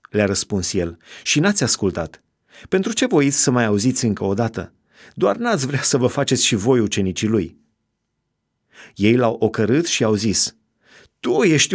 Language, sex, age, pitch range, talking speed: Romanian, male, 30-49, 105-145 Hz, 170 wpm